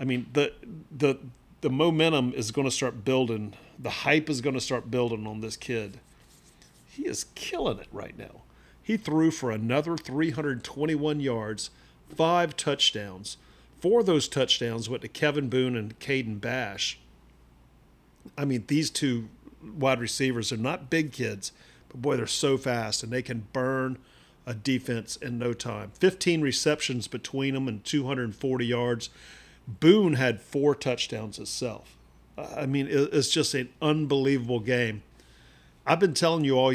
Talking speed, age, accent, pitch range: 155 wpm, 40-59, American, 110-145 Hz